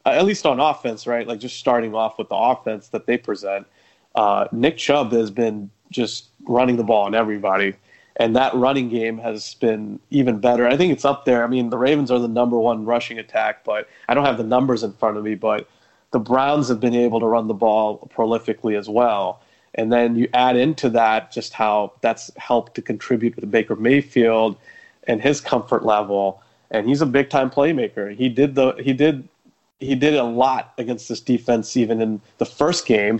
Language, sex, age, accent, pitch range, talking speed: English, male, 30-49, American, 110-125 Hz, 205 wpm